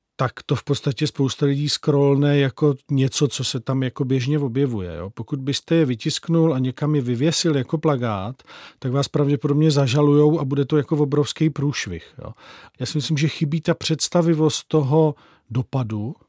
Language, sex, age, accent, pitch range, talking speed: Czech, male, 40-59, native, 135-155 Hz, 170 wpm